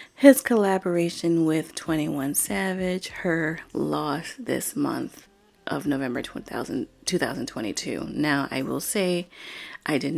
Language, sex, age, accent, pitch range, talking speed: English, female, 30-49, American, 160-200 Hz, 105 wpm